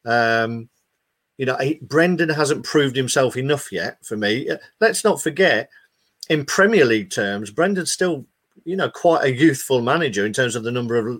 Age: 50-69